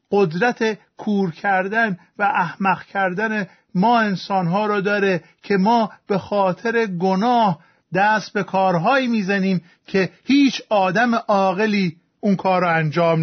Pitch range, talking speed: 175-220 Hz, 125 wpm